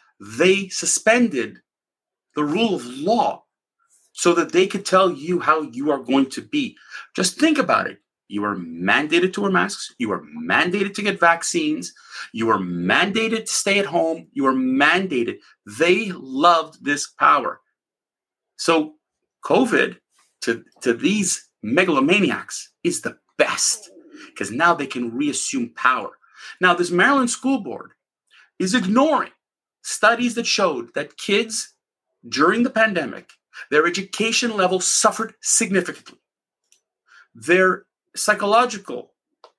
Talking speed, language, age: 130 wpm, English, 40-59